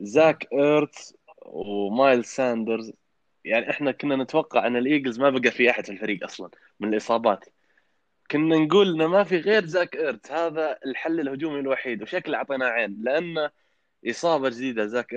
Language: Arabic